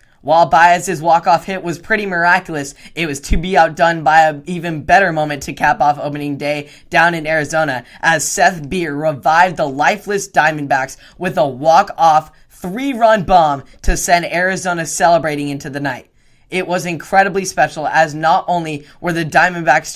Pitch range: 145-175 Hz